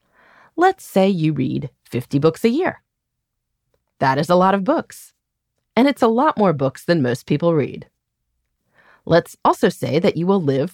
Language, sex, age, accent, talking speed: English, female, 30-49, American, 175 wpm